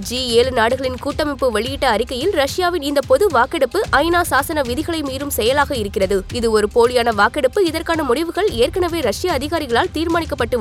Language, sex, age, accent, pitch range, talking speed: Tamil, female, 20-39, native, 265-355 Hz, 145 wpm